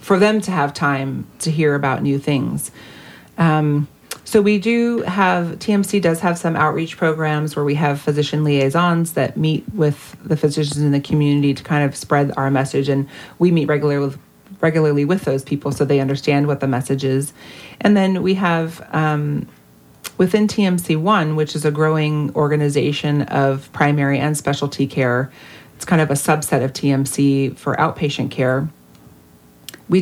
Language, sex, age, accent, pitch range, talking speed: English, female, 30-49, American, 140-165 Hz, 170 wpm